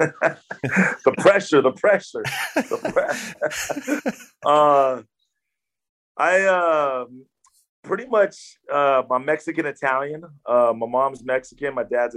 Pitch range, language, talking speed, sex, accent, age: 115-135 Hz, English, 105 wpm, male, American, 30-49